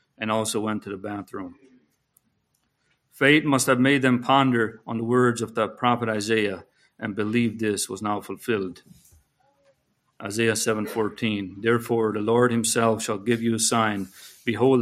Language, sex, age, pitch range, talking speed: English, male, 50-69, 110-135 Hz, 155 wpm